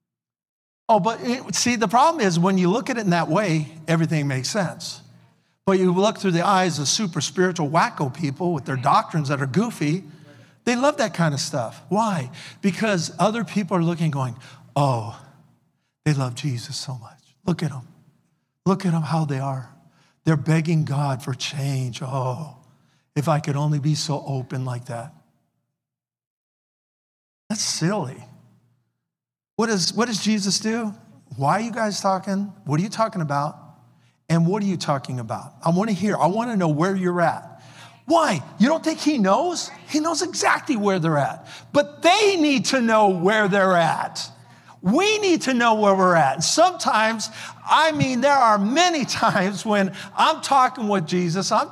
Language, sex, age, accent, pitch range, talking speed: English, male, 50-69, American, 150-220 Hz, 175 wpm